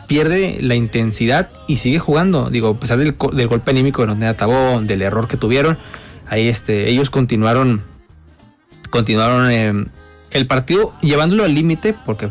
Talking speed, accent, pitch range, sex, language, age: 145 wpm, Mexican, 115-145 Hz, male, Spanish, 30-49